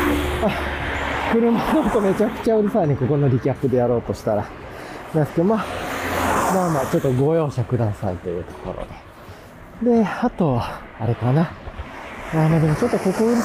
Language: Japanese